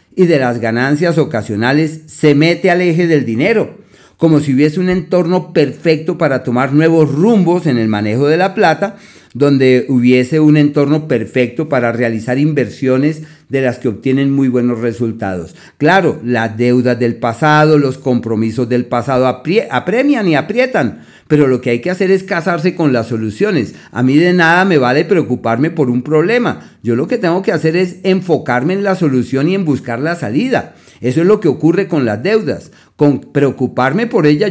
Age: 40-59